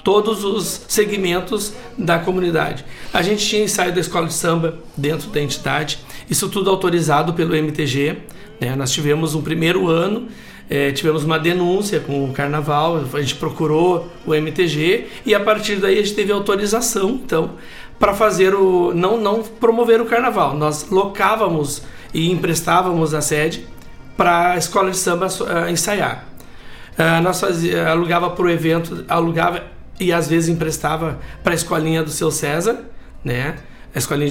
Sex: male